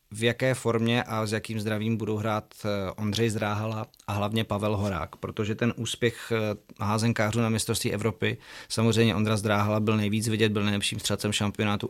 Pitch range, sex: 100-110 Hz, male